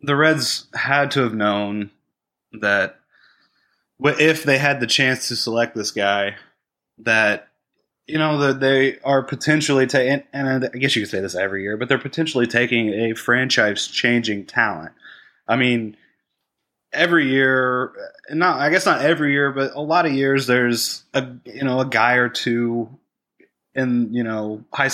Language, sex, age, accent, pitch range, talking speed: English, male, 20-39, American, 110-135 Hz, 160 wpm